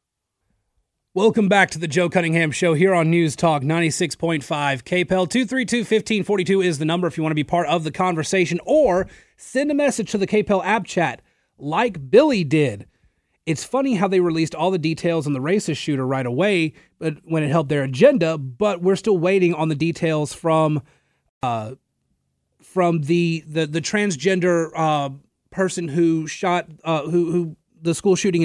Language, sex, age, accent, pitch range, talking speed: English, male, 30-49, American, 150-195 Hz, 190 wpm